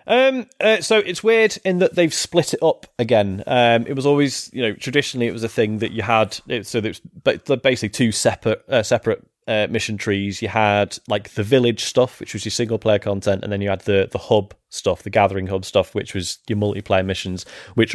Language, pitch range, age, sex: English, 95-115 Hz, 30-49, male